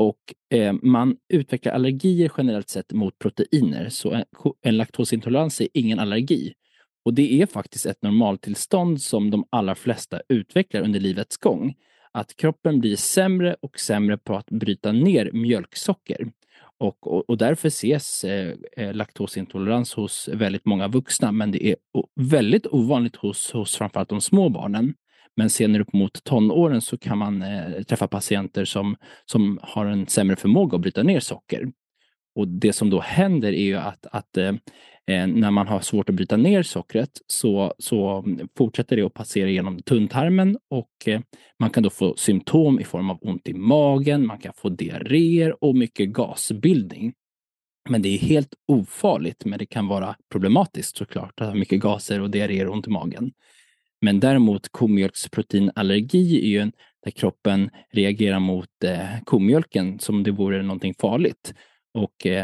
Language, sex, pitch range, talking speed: Swedish, male, 100-125 Hz, 160 wpm